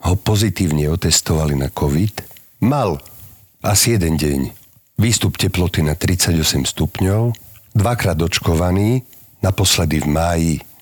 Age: 50-69